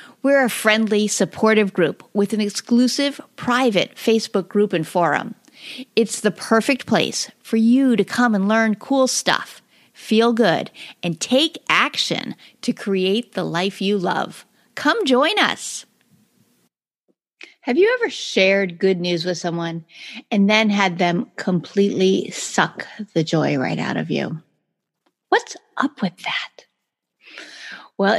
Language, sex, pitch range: English, female, 185-260 Hz